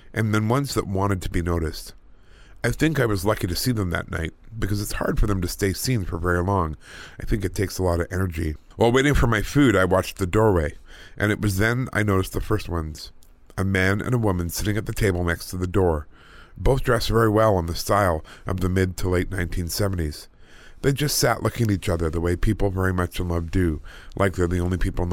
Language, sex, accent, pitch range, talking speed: English, male, American, 85-110 Hz, 245 wpm